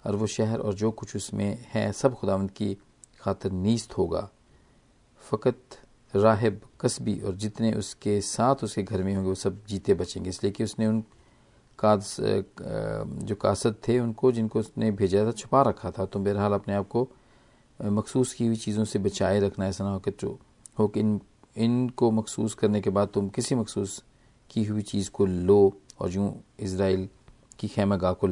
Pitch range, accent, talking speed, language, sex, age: 100-120 Hz, native, 170 wpm, Hindi, male, 40-59